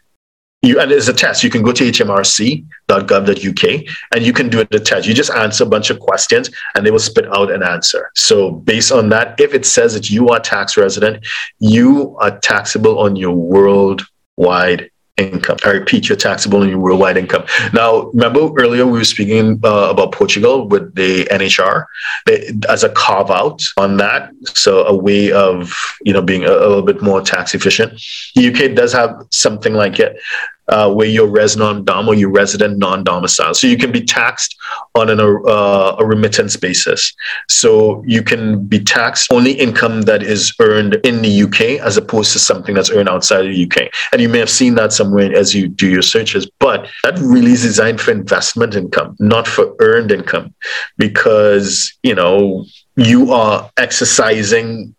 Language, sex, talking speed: English, male, 190 wpm